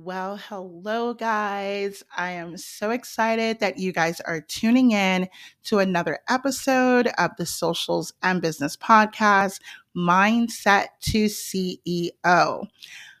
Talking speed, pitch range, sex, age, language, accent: 115 wpm, 175-225 Hz, female, 30-49, English, American